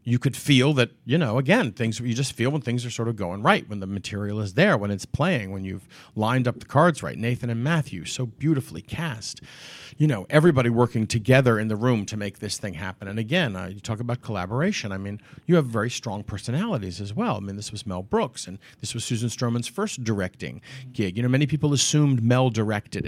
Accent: American